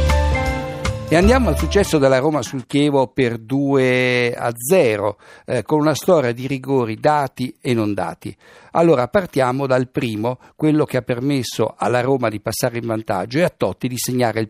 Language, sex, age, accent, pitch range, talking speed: Italian, male, 60-79, native, 115-150 Hz, 165 wpm